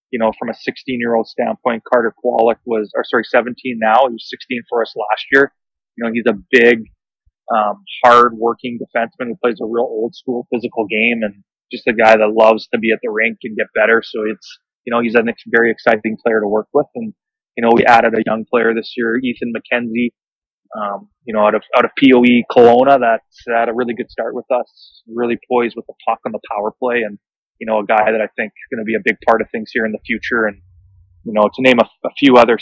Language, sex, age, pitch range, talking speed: English, male, 20-39, 105-120 Hz, 235 wpm